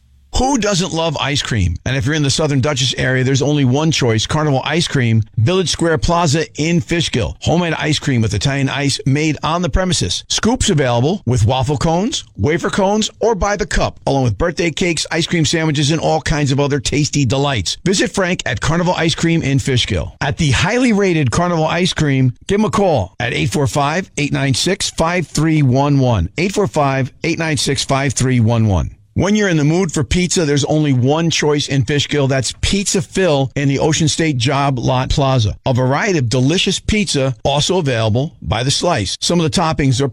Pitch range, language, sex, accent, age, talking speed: 130-170 Hz, English, male, American, 50-69, 180 wpm